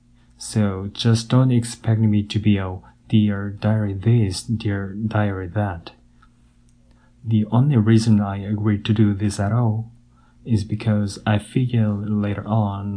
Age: 30-49